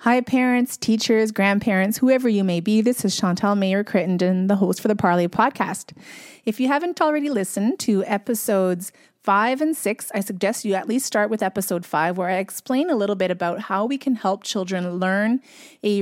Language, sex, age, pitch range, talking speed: English, female, 30-49, 190-245 Hz, 190 wpm